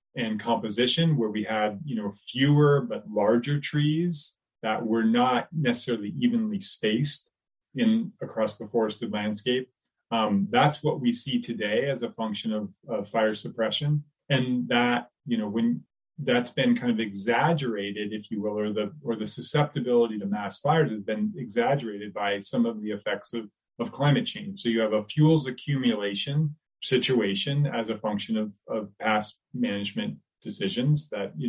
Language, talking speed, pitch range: English, 160 wpm, 110-150 Hz